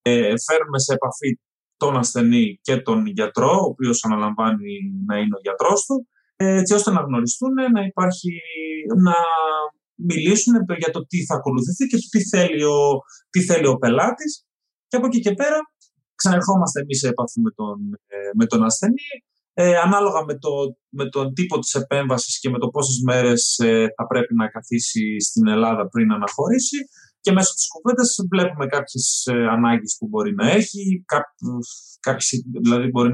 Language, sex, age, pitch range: Greek, male, 30-49, 115-195 Hz